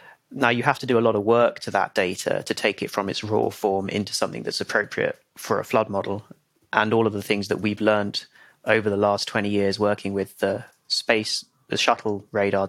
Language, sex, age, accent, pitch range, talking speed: English, male, 30-49, British, 100-110 Hz, 230 wpm